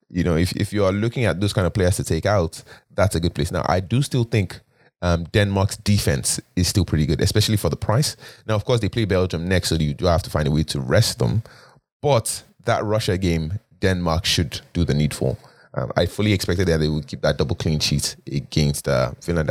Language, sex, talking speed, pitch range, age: English, male, 240 wpm, 85-110 Hz, 20-39